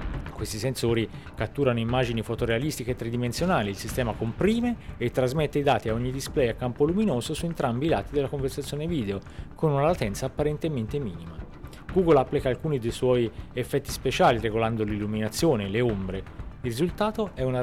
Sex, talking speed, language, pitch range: male, 160 wpm, Italian, 110-145 Hz